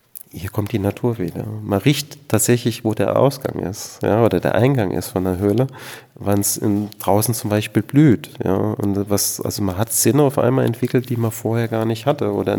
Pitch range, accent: 100-125 Hz, German